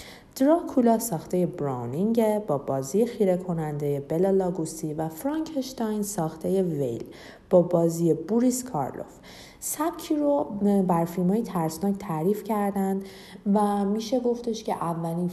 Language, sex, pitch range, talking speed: Persian, female, 160-215 Hz, 115 wpm